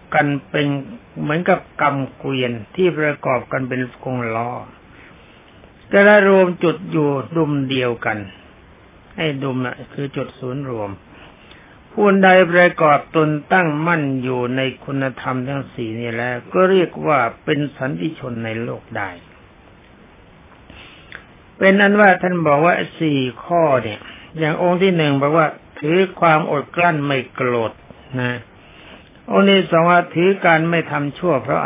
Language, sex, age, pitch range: Thai, male, 60-79, 125-170 Hz